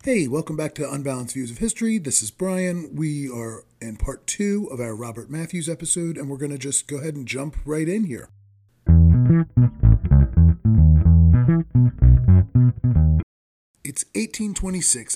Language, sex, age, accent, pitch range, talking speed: English, male, 30-49, American, 125-185 Hz, 140 wpm